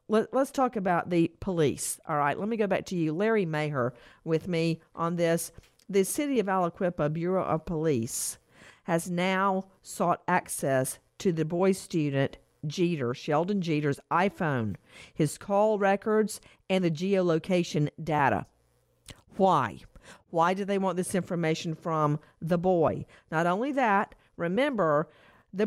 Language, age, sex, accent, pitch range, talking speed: English, 50-69, female, American, 160-210 Hz, 140 wpm